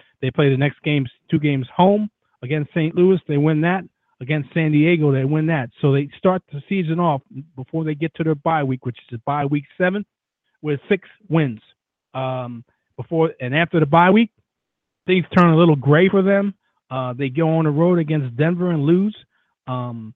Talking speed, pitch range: 200 wpm, 135-170 Hz